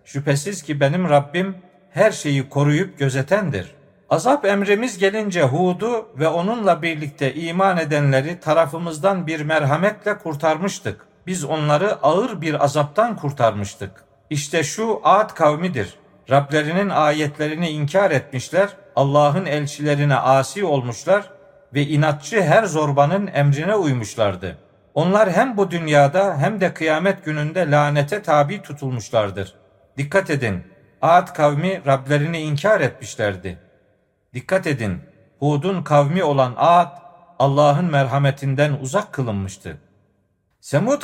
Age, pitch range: 50-69, 140-190 Hz